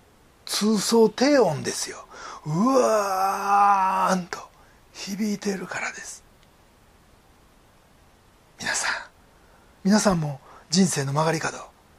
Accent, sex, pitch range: native, male, 195-265 Hz